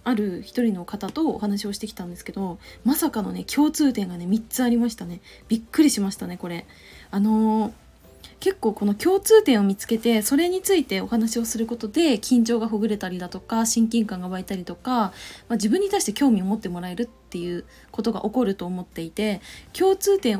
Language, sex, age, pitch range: Japanese, female, 20-39, 195-260 Hz